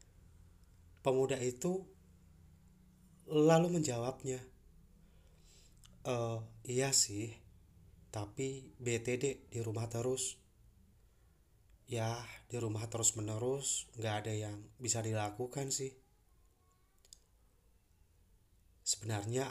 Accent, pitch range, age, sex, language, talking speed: native, 90-120 Hz, 30-49, male, Indonesian, 70 wpm